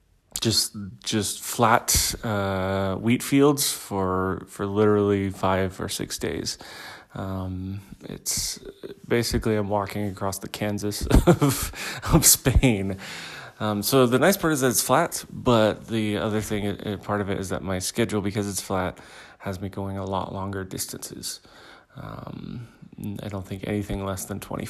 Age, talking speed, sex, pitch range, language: 30-49, 165 wpm, male, 95-110 Hz, English